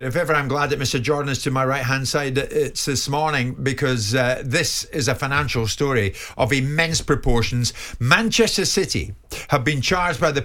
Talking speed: 185 wpm